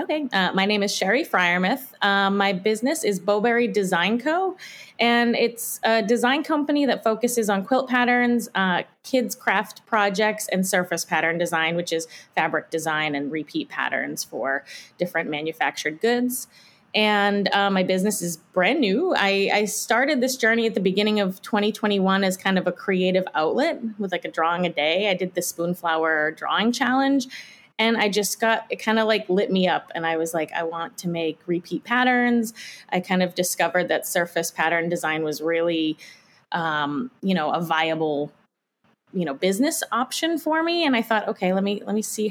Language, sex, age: English, female, 20-39